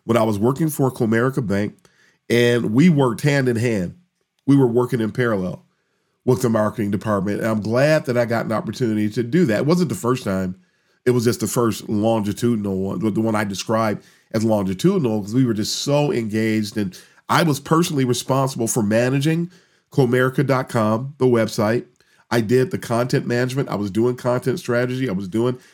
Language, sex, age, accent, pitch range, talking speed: English, male, 40-59, American, 110-130 Hz, 180 wpm